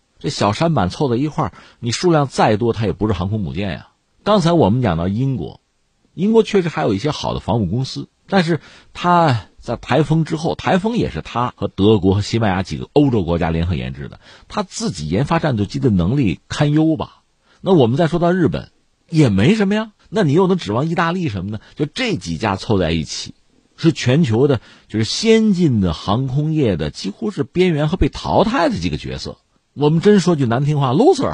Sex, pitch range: male, 100-155 Hz